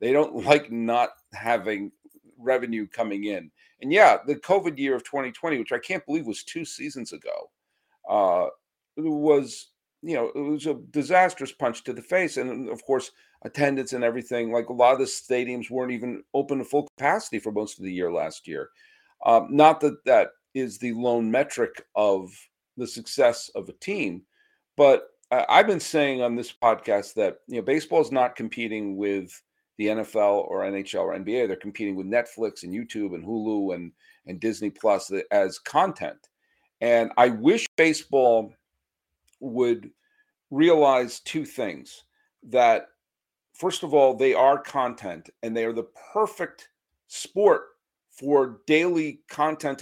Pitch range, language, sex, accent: 115-190 Hz, English, male, American